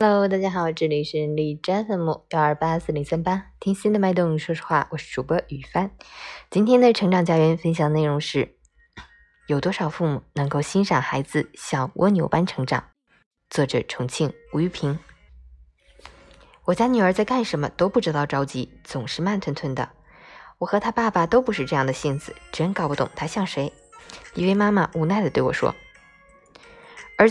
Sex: female